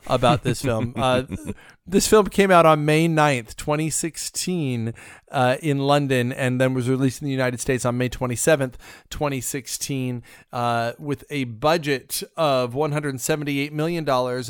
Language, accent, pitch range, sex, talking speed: English, American, 125-150 Hz, male, 145 wpm